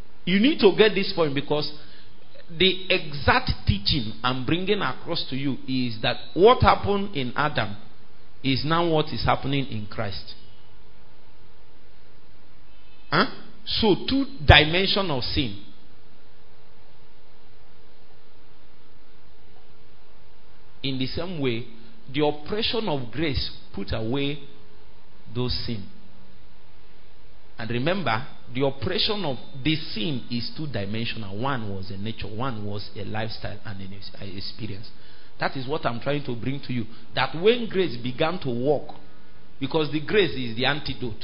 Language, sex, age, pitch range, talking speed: English, male, 50-69, 115-160 Hz, 130 wpm